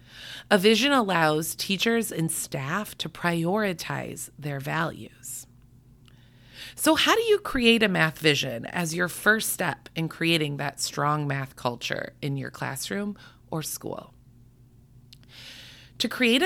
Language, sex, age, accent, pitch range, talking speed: English, female, 30-49, American, 130-205 Hz, 130 wpm